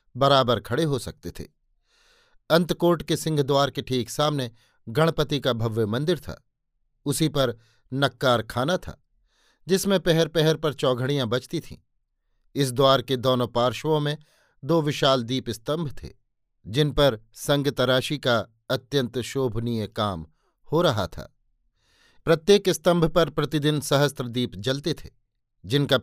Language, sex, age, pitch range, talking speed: Hindi, male, 50-69, 125-155 Hz, 135 wpm